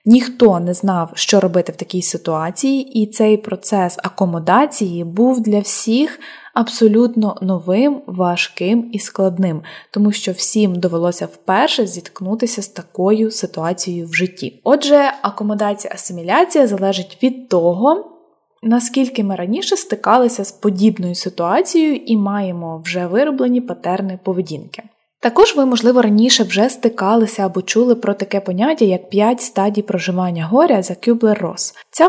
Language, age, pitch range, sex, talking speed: Ukrainian, 20-39, 190-245 Hz, female, 130 wpm